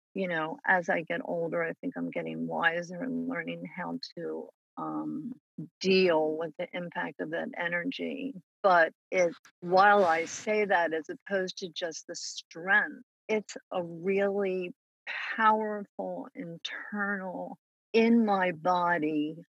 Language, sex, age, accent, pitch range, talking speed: English, female, 50-69, American, 165-200 Hz, 130 wpm